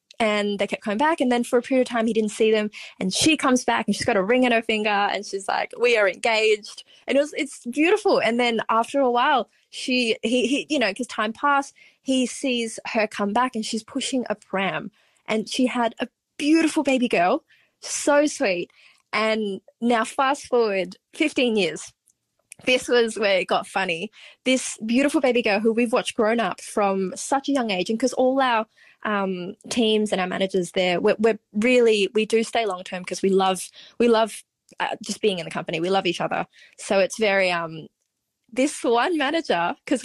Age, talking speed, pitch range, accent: 20-39, 205 wpm, 205-260 Hz, Australian